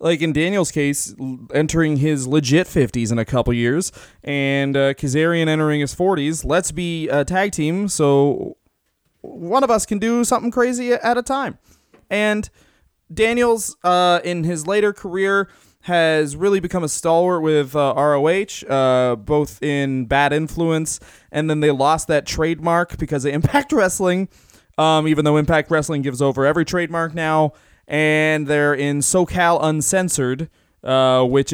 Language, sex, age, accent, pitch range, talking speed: English, male, 20-39, American, 140-175 Hz, 155 wpm